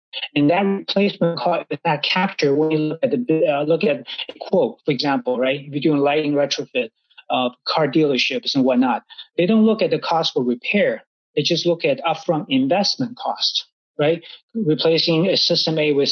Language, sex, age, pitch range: English, male, 30-49, 150-190 Hz